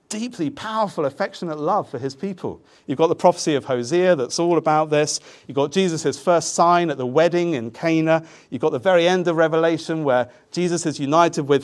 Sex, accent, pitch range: male, British, 135-175 Hz